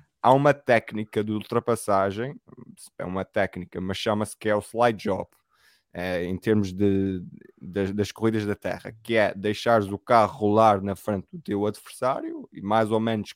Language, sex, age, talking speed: English, male, 20-39, 160 wpm